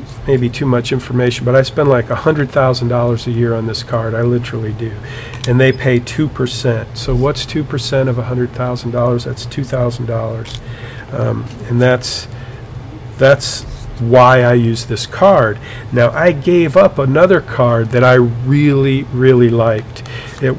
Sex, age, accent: male, 50-69, American